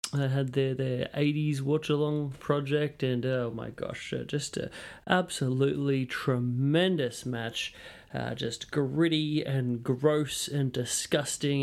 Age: 30-49